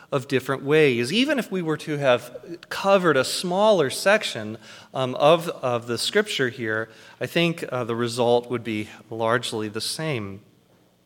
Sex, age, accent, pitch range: male, 30-49, American, 110-150 Hz